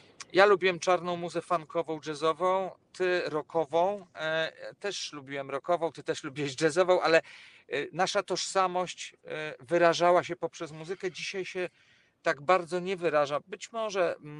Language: Polish